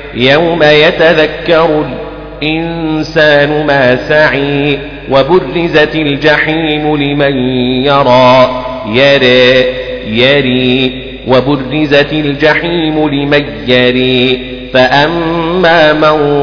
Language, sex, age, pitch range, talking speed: Arabic, male, 40-59, 130-155 Hz, 60 wpm